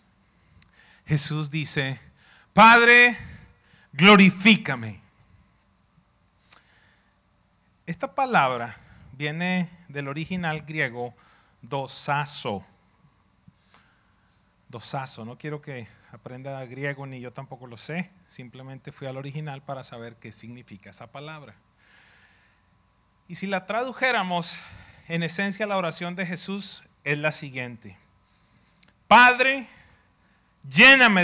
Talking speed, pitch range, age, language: 90 wpm, 140-215 Hz, 40-59, English